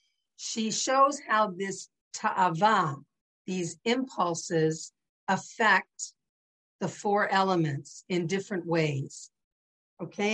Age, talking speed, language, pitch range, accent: 50-69, 85 wpm, English, 175-220 Hz, American